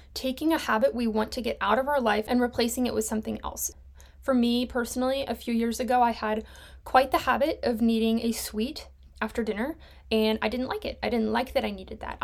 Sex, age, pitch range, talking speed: female, 10-29, 220-250 Hz, 230 wpm